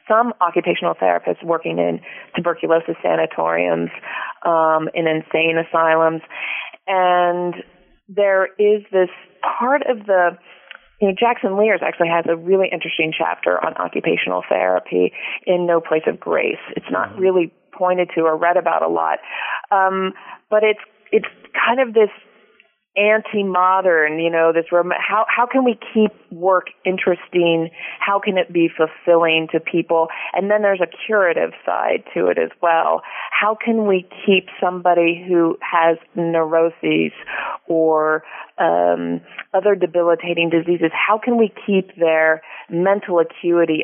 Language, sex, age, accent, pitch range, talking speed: English, female, 30-49, American, 165-200 Hz, 140 wpm